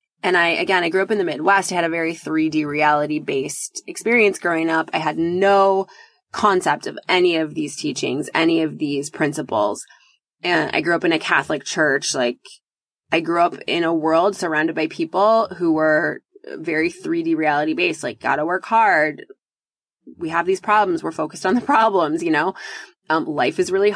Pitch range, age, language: 165-210 Hz, 20-39, English